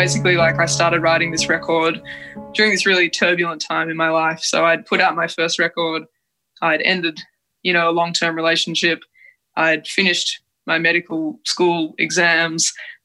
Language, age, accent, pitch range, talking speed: English, 20-39, Australian, 165-175 Hz, 160 wpm